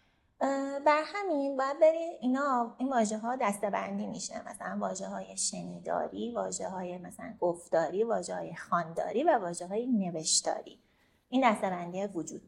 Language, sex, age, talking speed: Persian, female, 30-49, 125 wpm